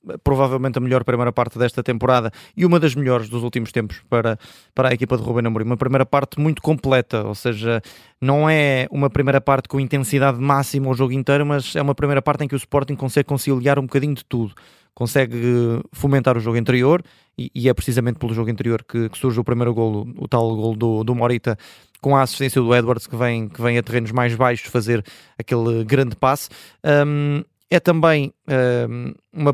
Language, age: Portuguese, 20-39